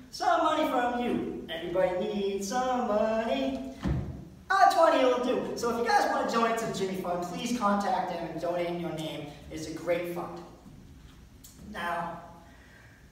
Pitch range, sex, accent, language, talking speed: 175-285 Hz, male, American, English, 160 wpm